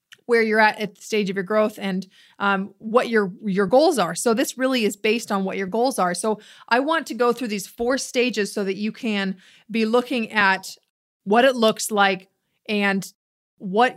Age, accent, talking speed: 30-49, American, 205 wpm